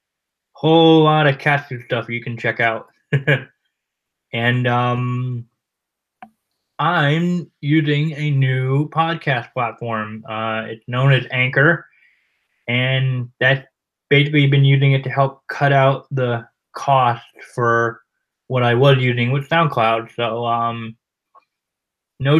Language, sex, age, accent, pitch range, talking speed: English, male, 20-39, American, 125-145 Hz, 120 wpm